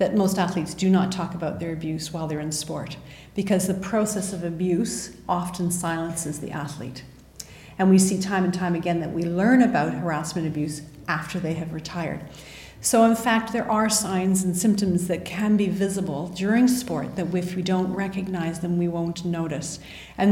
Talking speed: 185 wpm